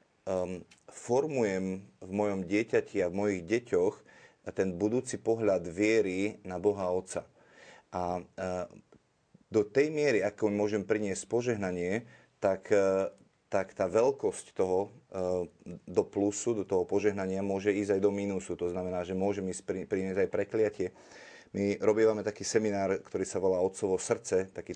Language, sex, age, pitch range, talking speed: Slovak, male, 30-49, 95-105 Hz, 135 wpm